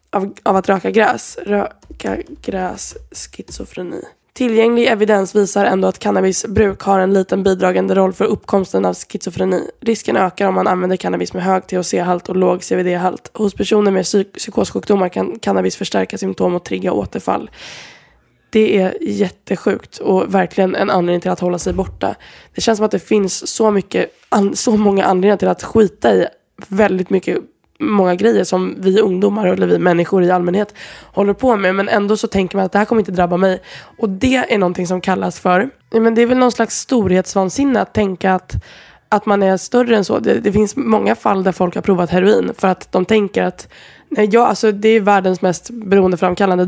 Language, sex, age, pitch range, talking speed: Swedish, female, 20-39, 185-215 Hz, 190 wpm